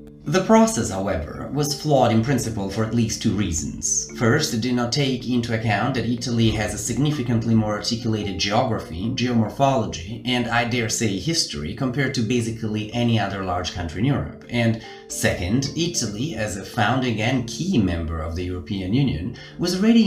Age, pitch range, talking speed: 30-49, 105-130 Hz, 170 wpm